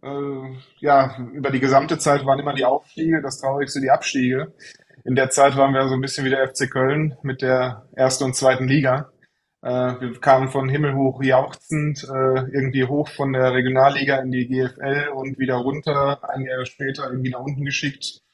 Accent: German